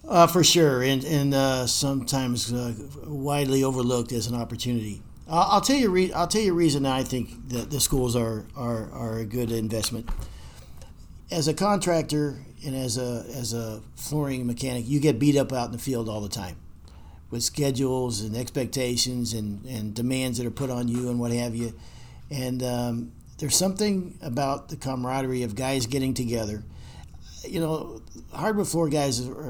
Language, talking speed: English, 170 wpm